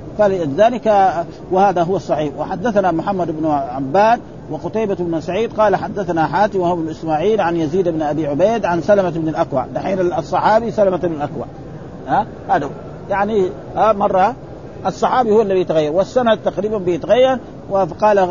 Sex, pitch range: male, 160-205 Hz